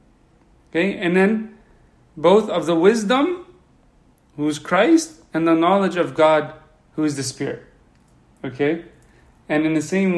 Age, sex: 30-49, male